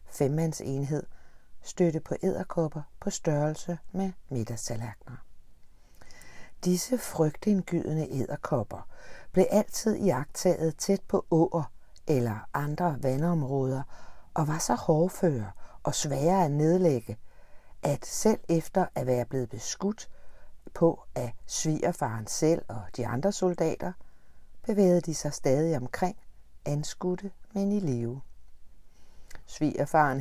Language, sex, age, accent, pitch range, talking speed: Danish, female, 60-79, native, 125-170 Hz, 105 wpm